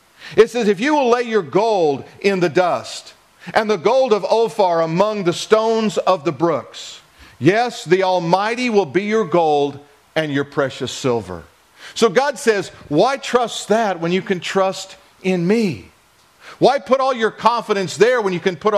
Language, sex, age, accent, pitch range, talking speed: English, male, 50-69, American, 165-210 Hz, 175 wpm